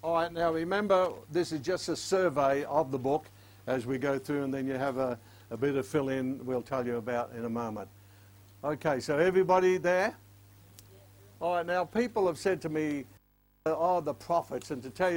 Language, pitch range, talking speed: English, 125-165 Hz, 200 wpm